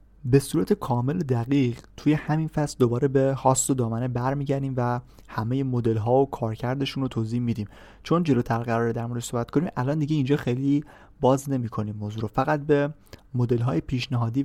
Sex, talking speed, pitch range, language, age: male, 165 wpm, 115-135 Hz, Persian, 30-49